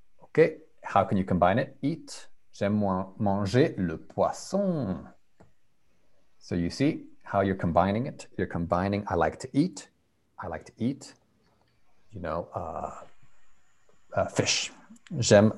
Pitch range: 95-140 Hz